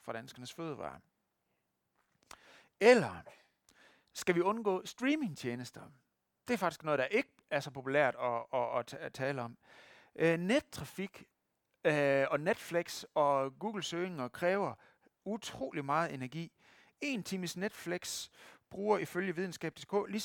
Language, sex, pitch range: Danish, male, 145-205 Hz